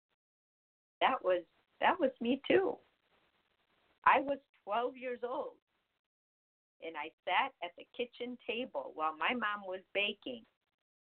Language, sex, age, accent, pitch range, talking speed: English, female, 50-69, American, 165-255 Hz, 125 wpm